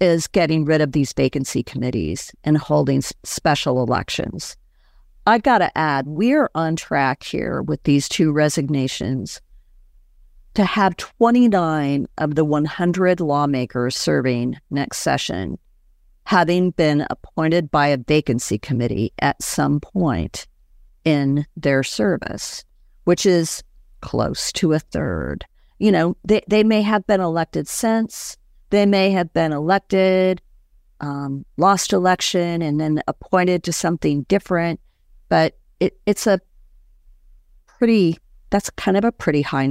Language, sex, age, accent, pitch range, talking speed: English, female, 50-69, American, 140-185 Hz, 125 wpm